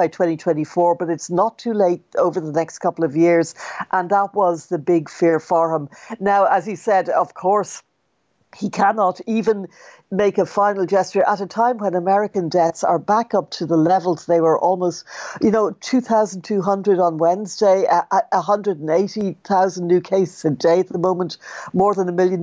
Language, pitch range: English, 165-200 Hz